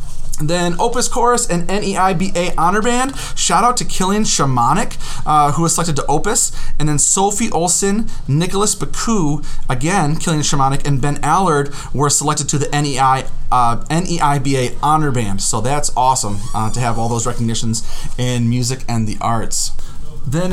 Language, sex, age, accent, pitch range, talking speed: English, male, 30-49, American, 125-165 Hz, 160 wpm